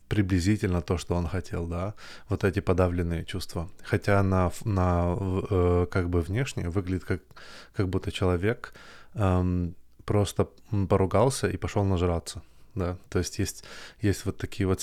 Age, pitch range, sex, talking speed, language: 20-39, 90-100 Hz, male, 145 wpm, Russian